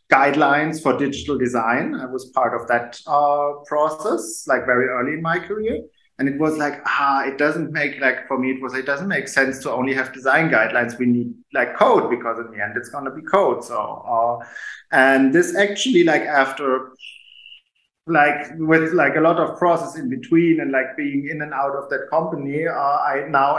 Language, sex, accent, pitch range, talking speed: English, male, German, 125-150 Hz, 200 wpm